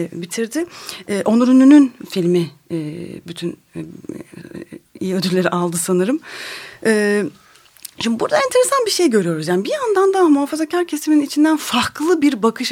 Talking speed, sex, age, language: 140 wpm, female, 30-49, Turkish